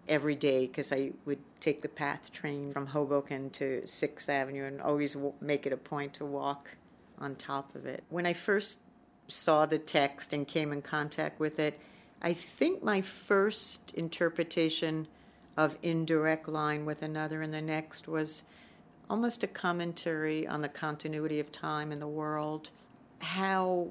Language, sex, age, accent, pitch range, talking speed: English, female, 60-79, American, 145-165 Hz, 160 wpm